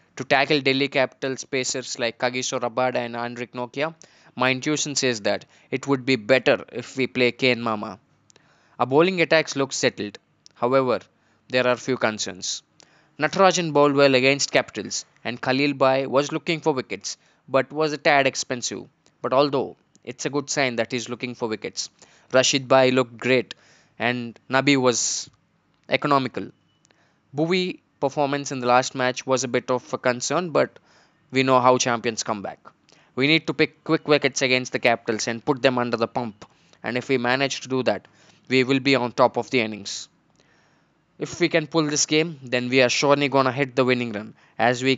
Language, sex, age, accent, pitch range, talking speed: Telugu, male, 20-39, native, 125-140 Hz, 180 wpm